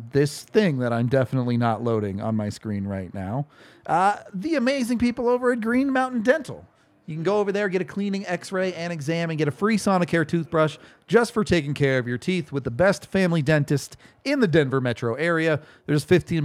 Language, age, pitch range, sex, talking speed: English, 40-59, 130-180 Hz, male, 210 wpm